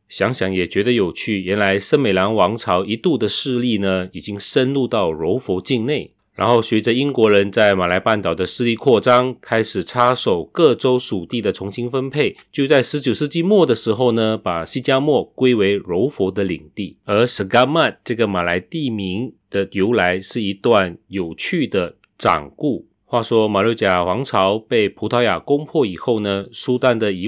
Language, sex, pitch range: Chinese, male, 100-130 Hz